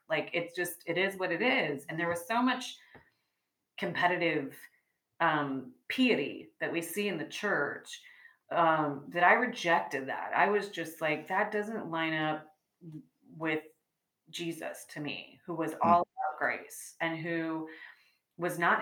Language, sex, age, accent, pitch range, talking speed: English, female, 30-49, American, 145-175 Hz, 155 wpm